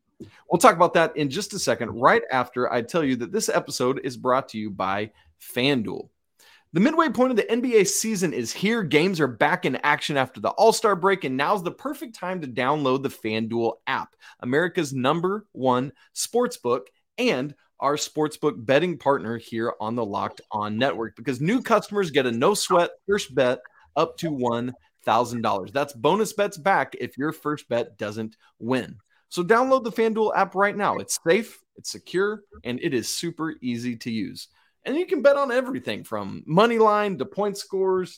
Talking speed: 180 wpm